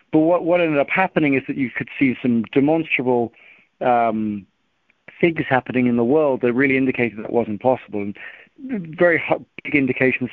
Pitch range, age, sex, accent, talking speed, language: 115-140 Hz, 40-59, male, British, 165 wpm, English